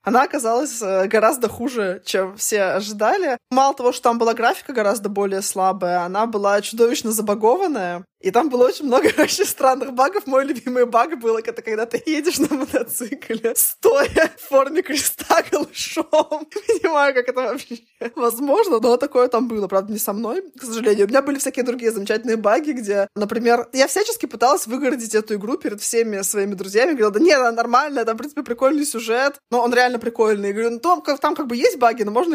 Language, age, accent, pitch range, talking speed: Russian, 20-39, native, 220-295 Hz, 190 wpm